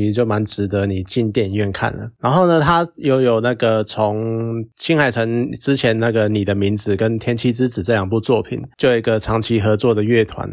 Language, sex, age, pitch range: Chinese, male, 20-39, 110-130 Hz